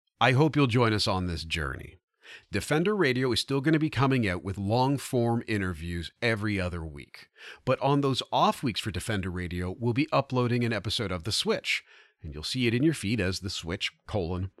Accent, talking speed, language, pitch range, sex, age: American, 205 wpm, English, 100-140 Hz, male, 40-59